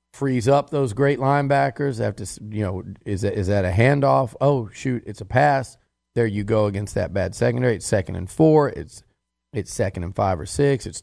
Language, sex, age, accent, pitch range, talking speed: English, male, 40-59, American, 100-130 Hz, 210 wpm